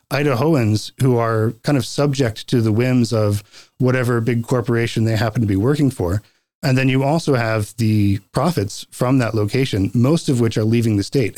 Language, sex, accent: English, male, American